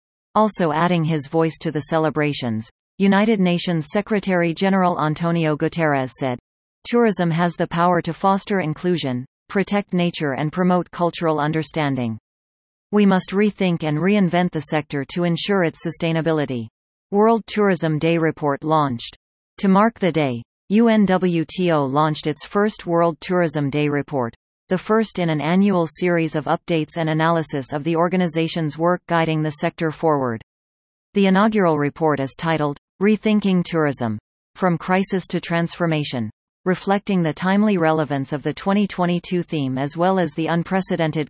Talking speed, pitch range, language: 140 wpm, 150-185 Hz, English